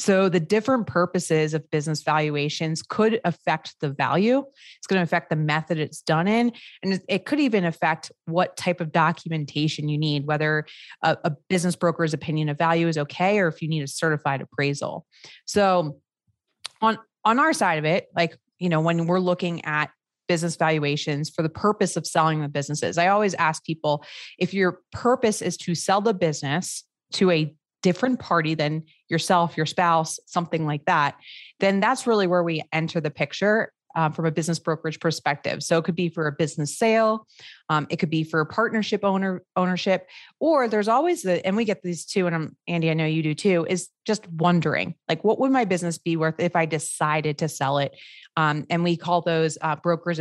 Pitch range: 155-185 Hz